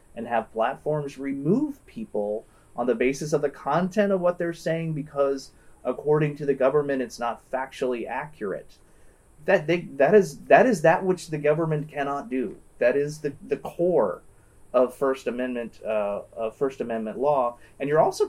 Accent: American